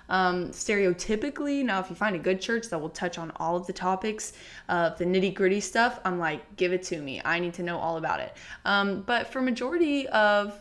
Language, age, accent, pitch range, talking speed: English, 20-39, American, 180-240 Hz, 225 wpm